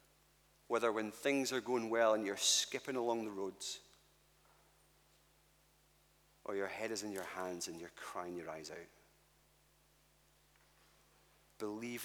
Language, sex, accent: English, male, British